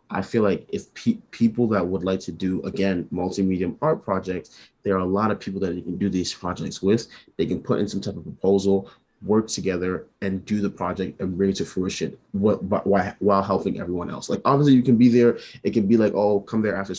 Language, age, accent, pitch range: English, 20-39, American, 95-110 Hz